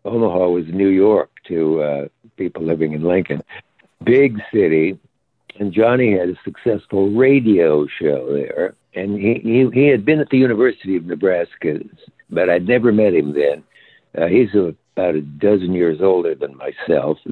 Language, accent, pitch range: English, American, 85-115 Hz